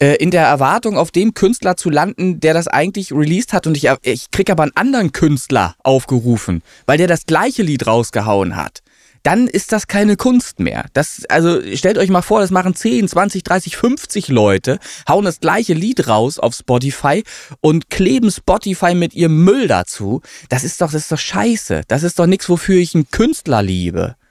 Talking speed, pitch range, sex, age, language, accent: 195 wpm, 145-205 Hz, male, 20-39, German, German